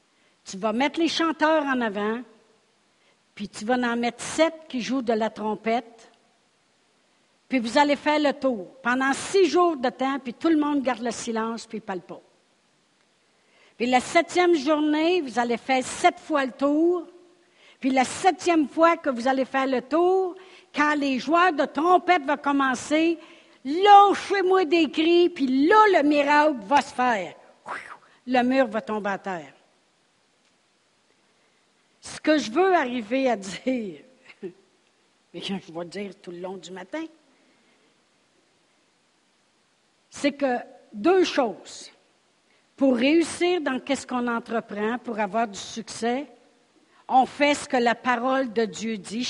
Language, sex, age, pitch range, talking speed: French, female, 60-79, 230-305 Hz, 155 wpm